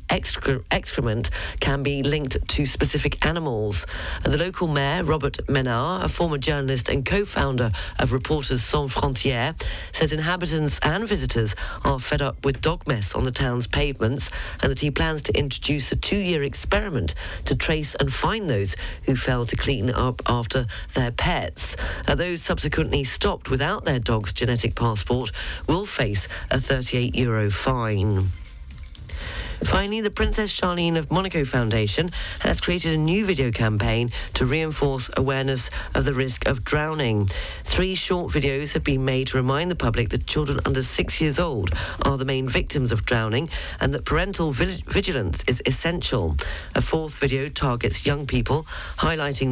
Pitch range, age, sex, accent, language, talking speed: 110-150 Hz, 40-59, female, British, English, 155 wpm